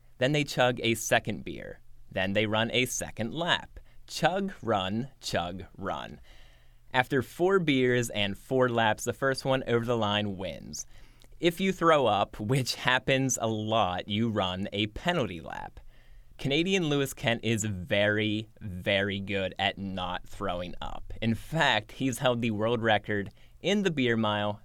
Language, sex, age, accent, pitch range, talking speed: English, male, 20-39, American, 100-125 Hz, 155 wpm